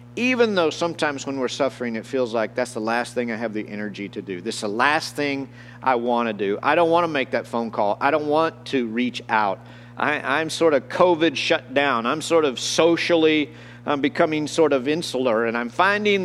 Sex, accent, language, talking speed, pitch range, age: male, American, English, 225 wpm, 120-165 Hz, 50-69